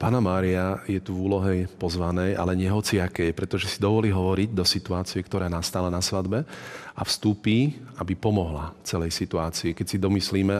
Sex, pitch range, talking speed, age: male, 90-100 Hz, 165 wpm, 40-59